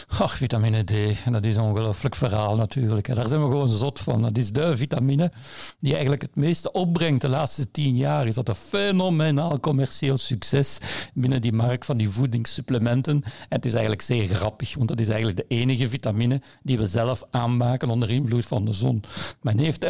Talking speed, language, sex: 185 wpm, Dutch, male